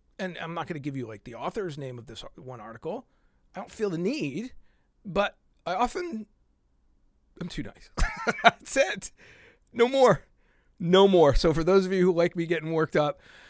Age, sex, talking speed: 40-59, male, 190 wpm